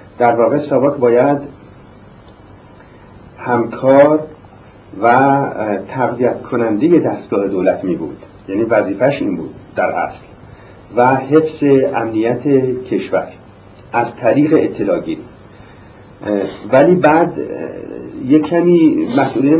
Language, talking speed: Persian, 90 wpm